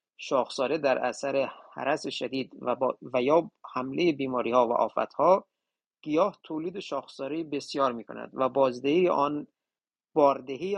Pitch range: 135-170 Hz